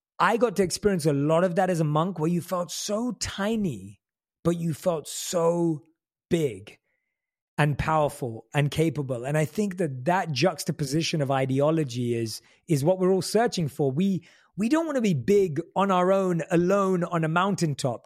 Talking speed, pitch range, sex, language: 180 wpm, 155-200 Hz, male, English